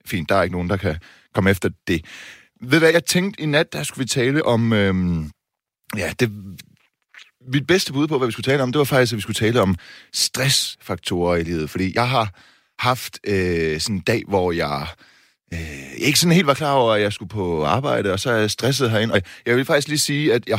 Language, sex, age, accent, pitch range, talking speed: Danish, male, 30-49, native, 95-130 Hz, 225 wpm